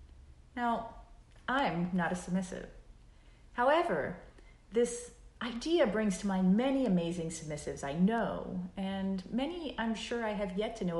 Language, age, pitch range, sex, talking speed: English, 30-49, 165-230 Hz, female, 135 wpm